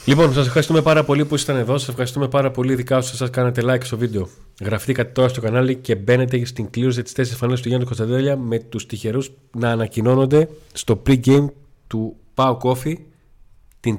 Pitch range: 110-135 Hz